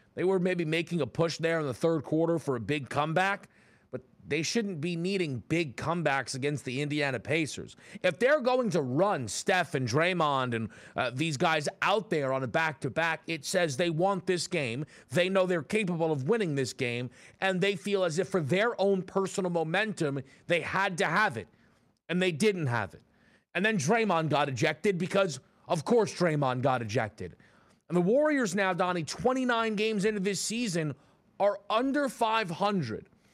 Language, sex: English, male